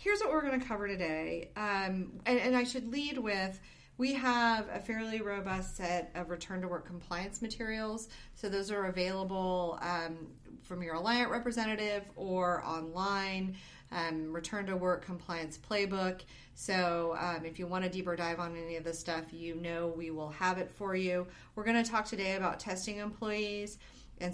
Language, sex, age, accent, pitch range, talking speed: English, female, 30-49, American, 170-205 Hz, 175 wpm